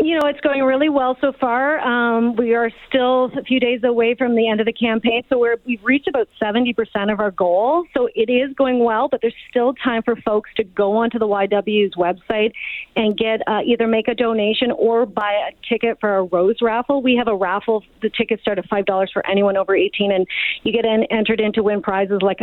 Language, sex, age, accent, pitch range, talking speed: English, female, 40-59, American, 205-240 Hz, 225 wpm